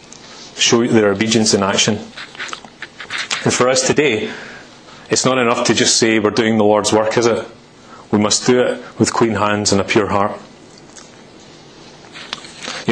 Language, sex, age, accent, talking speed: English, male, 30-49, British, 160 wpm